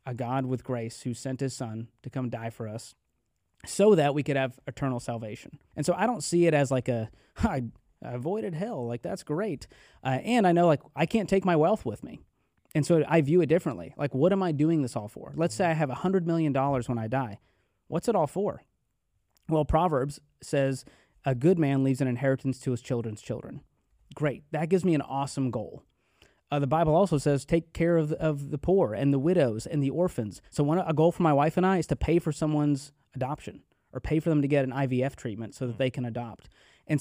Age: 30-49